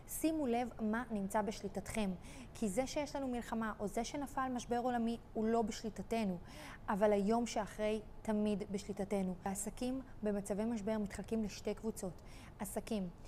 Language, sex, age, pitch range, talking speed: Hebrew, female, 20-39, 210-240 Hz, 135 wpm